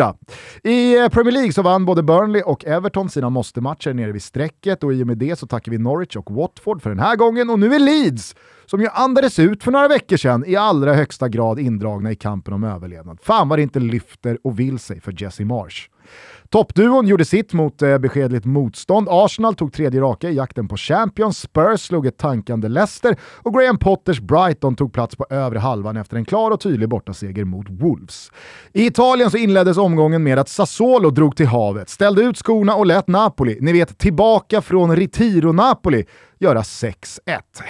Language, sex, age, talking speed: Swedish, male, 30-49, 195 wpm